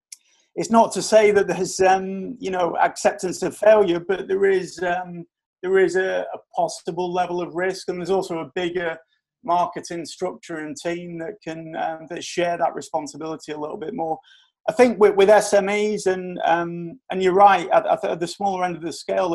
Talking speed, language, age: 190 wpm, English, 30-49